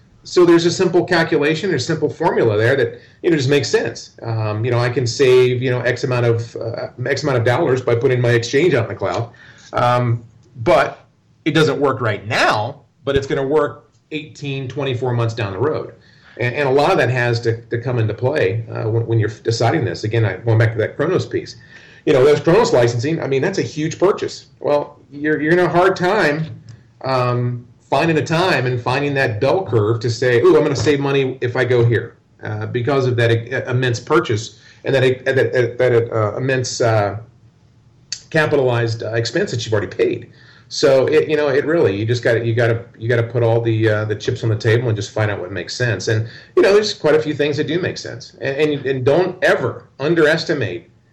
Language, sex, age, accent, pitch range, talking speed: English, male, 40-59, American, 115-145 Hz, 225 wpm